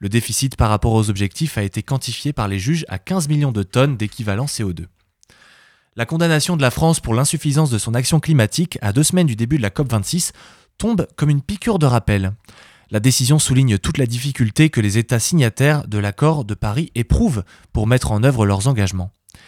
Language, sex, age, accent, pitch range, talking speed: French, male, 20-39, French, 110-145 Hz, 200 wpm